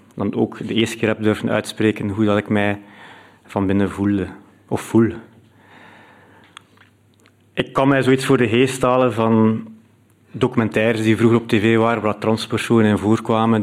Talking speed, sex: 155 wpm, male